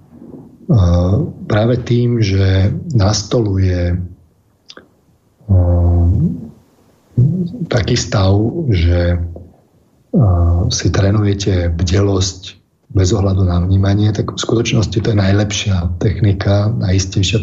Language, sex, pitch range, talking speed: Slovak, male, 95-110 Hz, 95 wpm